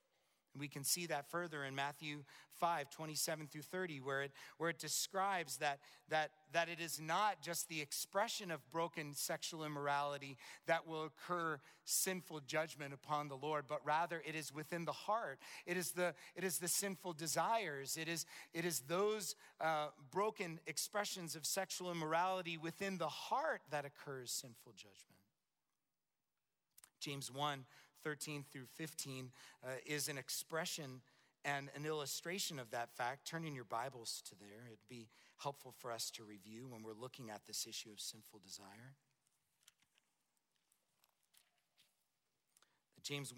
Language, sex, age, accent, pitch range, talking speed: English, male, 40-59, American, 140-170 Hz, 150 wpm